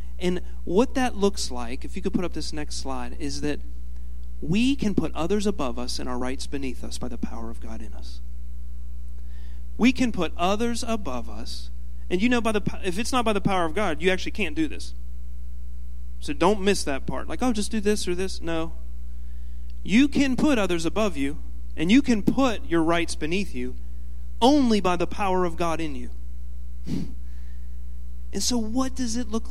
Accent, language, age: American, English, 40-59